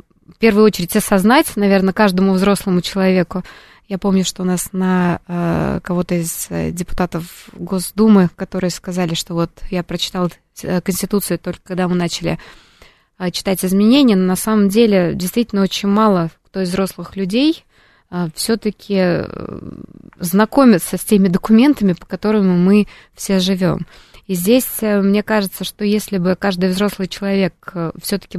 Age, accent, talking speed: 20-39, native, 135 wpm